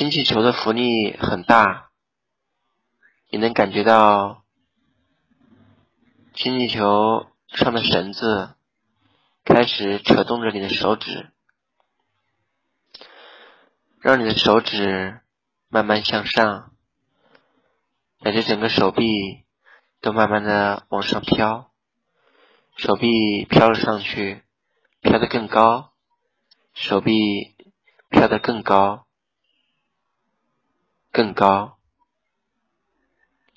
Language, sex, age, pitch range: Chinese, male, 20-39, 100-115 Hz